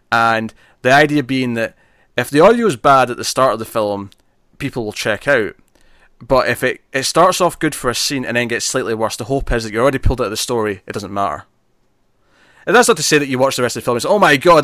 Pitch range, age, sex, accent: 110-130 Hz, 20-39, male, British